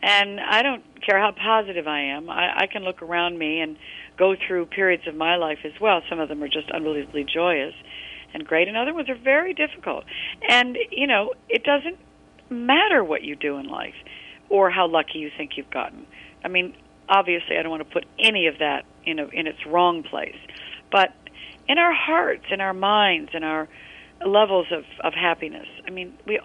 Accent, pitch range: American, 160-220 Hz